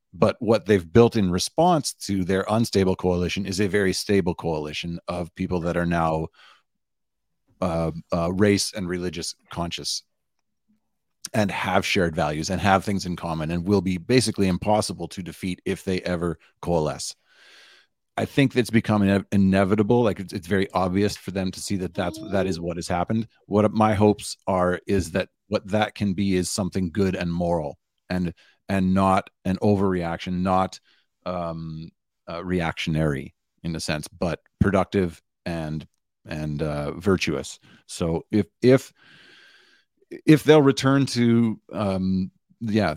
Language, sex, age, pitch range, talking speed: English, male, 30-49, 85-105 Hz, 150 wpm